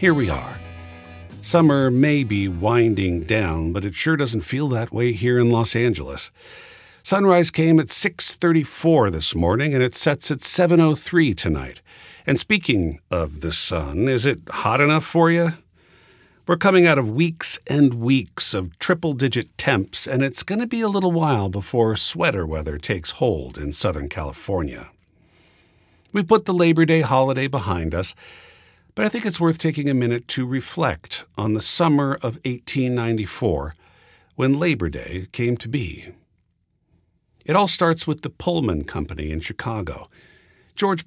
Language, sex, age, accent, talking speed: English, male, 50-69, American, 155 wpm